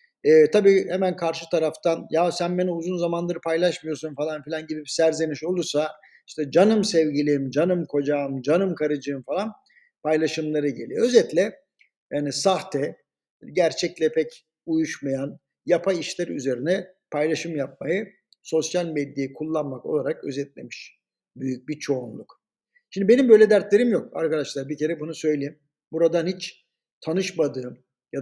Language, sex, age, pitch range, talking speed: Turkish, male, 50-69, 150-195 Hz, 125 wpm